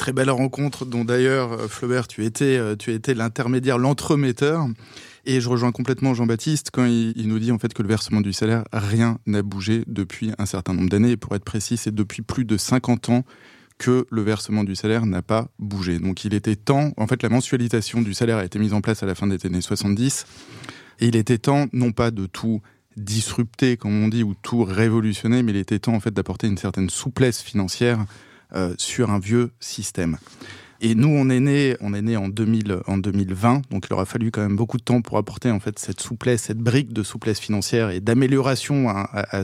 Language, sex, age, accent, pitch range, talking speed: French, male, 20-39, French, 105-125 Hz, 220 wpm